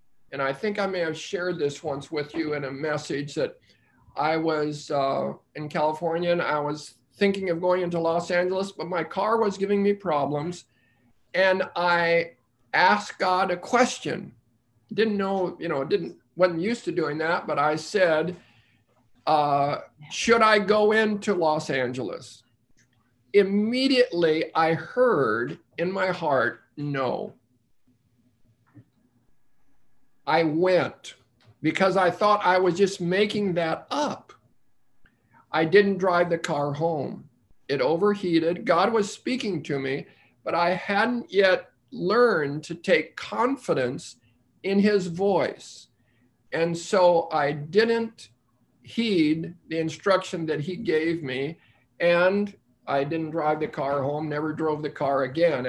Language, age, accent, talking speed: English, 50-69, American, 135 wpm